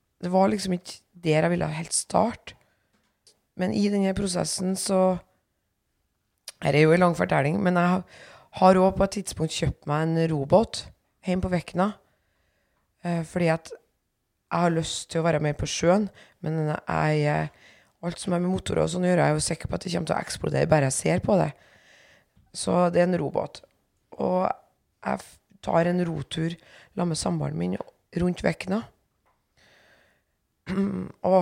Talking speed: 170 wpm